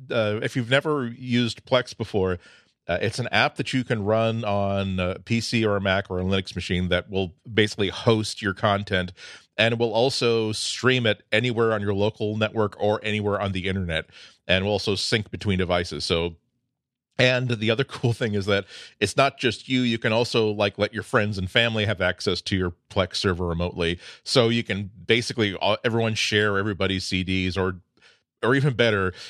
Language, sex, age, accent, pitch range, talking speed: English, male, 40-59, American, 95-115 Hz, 190 wpm